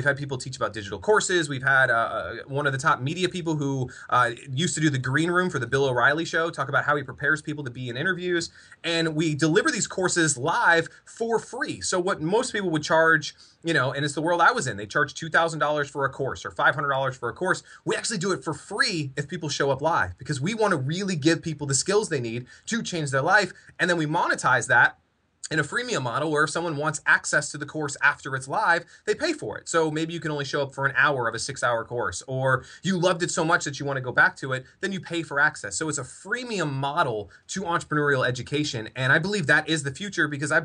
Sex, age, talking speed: male, 20-39, 255 wpm